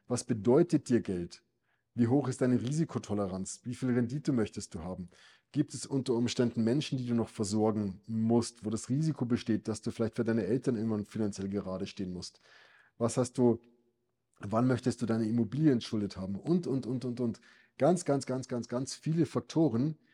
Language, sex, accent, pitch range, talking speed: German, male, German, 105-130 Hz, 185 wpm